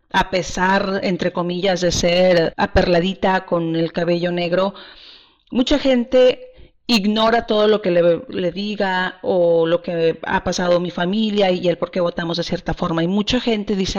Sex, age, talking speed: female, 40-59, 165 wpm